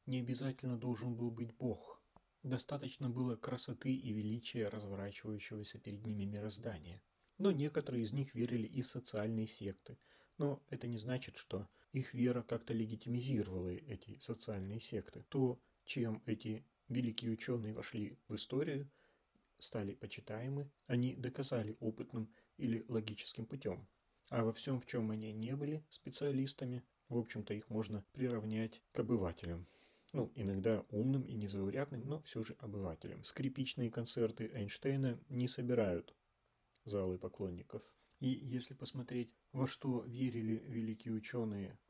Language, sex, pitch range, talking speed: Russian, male, 105-125 Hz, 130 wpm